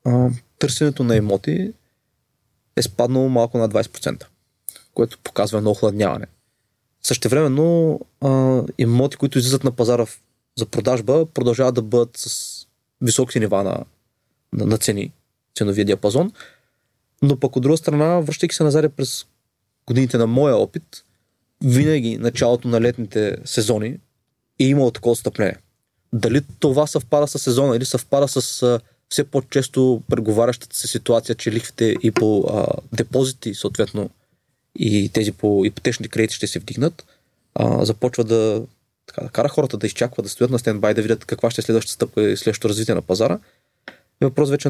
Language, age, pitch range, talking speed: Bulgarian, 20-39, 115-135 Hz, 150 wpm